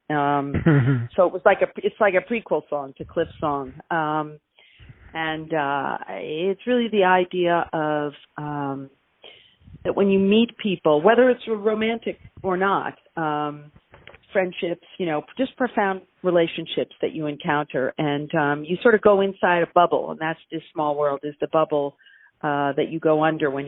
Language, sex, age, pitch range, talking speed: English, female, 40-59, 145-190 Hz, 165 wpm